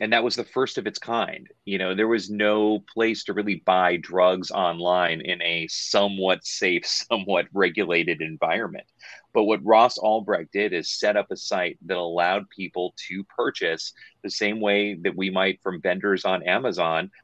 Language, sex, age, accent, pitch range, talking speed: English, male, 30-49, American, 95-110 Hz, 180 wpm